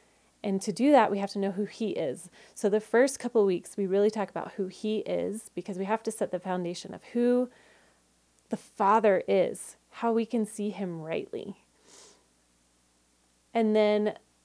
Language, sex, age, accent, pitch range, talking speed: English, female, 30-49, American, 190-220 Hz, 180 wpm